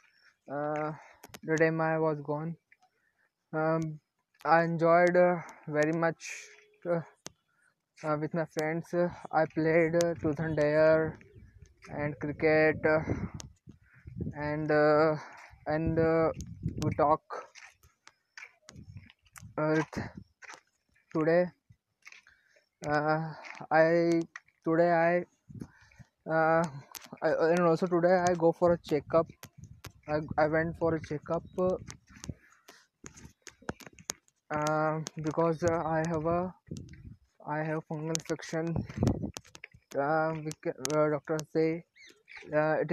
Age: 20-39